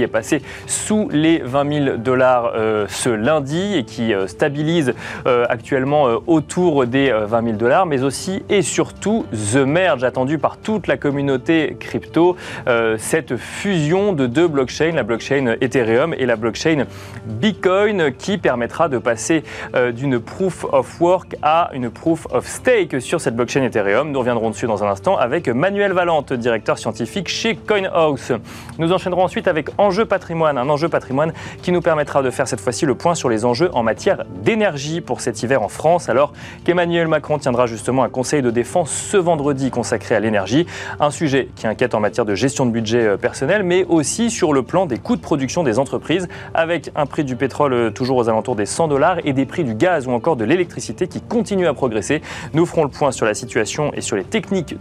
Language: French